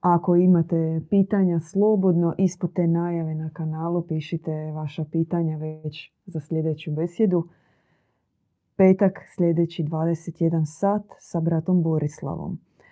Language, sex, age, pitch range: Croatian, female, 30-49, 160-185 Hz